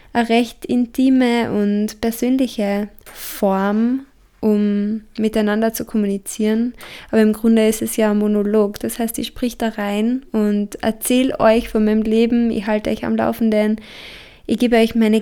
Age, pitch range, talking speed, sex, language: 20-39, 210-235 Hz, 155 wpm, female, German